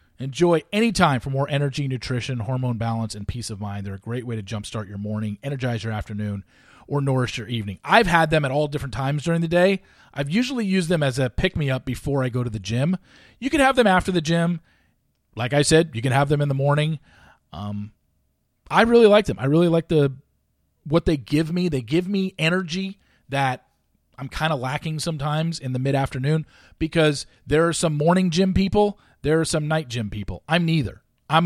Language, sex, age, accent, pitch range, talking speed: English, male, 40-59, American, 110-160 Hz, 210 wpm